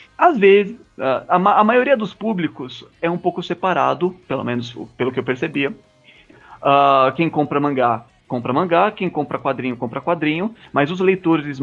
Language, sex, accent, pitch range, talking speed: Portuguese, male, Brazilian, 135-200 Hz, 155 wpm